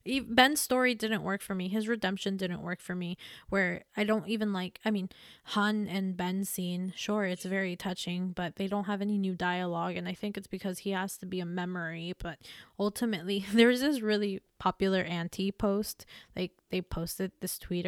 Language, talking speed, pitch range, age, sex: English, 195 wpm, 180-215 Hz, 20-39, female